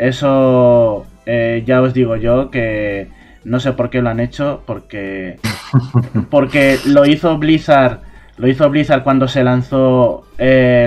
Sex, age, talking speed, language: male, 20-39, 135 wpm, Spanish